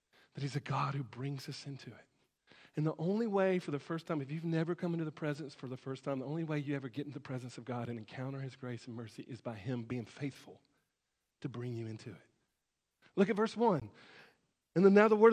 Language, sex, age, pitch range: English, male, 40-59, 140-230 Hz